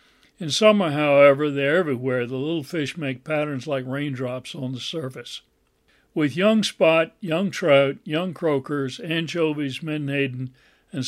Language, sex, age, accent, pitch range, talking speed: English, male, 60-79, American, 130-165 Hz, 135 wpm